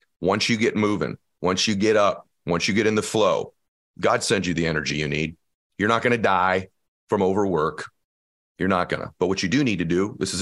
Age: 40-59